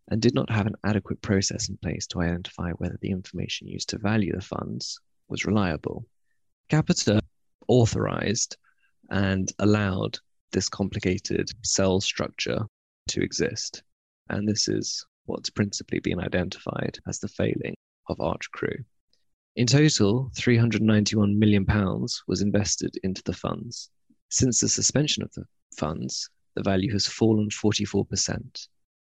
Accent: British